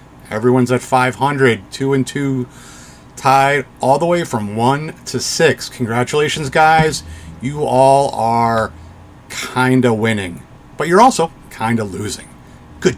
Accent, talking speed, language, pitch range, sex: American, 135 wpm, English, 125-160 Hz, male